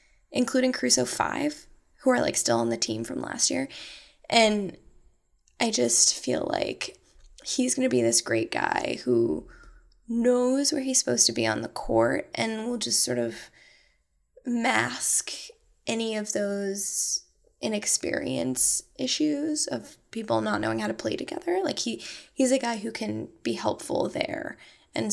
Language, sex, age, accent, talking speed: English, female, 10-29, American, 155 wpm